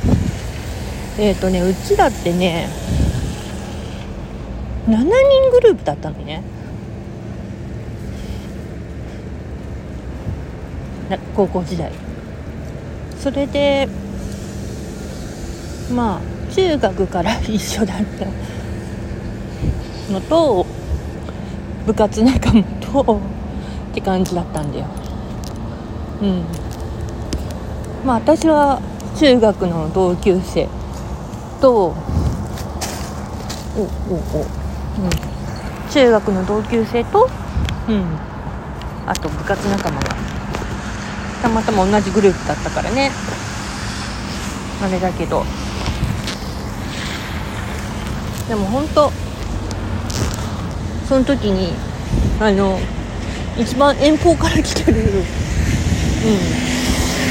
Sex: female